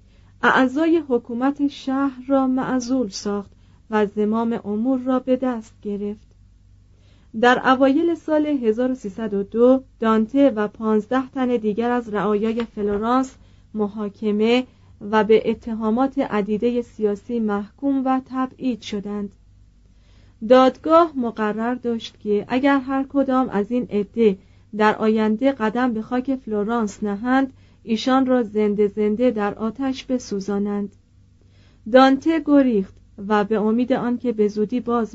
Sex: female